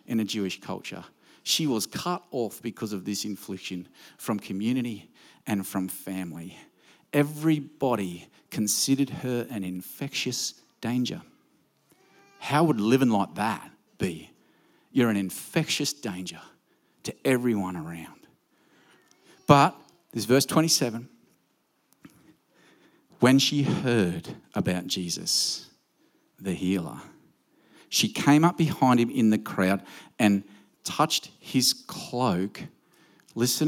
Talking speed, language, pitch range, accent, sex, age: 105 wpm, English, 105-155 Hz, Australian, male, 50-69